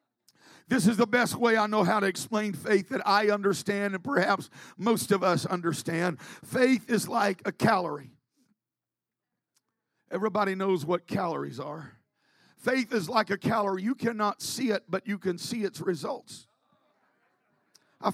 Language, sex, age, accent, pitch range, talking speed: English, male, 50-69, American, 215-280 Hz, 150 wpm